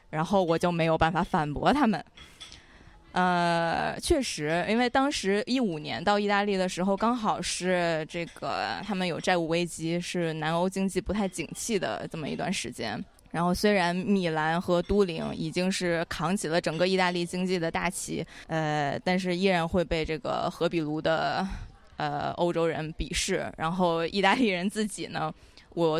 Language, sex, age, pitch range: English, female, 20-39, 165-200 Hz